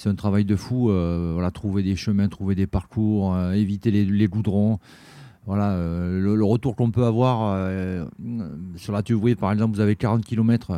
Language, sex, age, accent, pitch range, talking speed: French, male, 40-59, French, 100-125 Hz, 210 wpm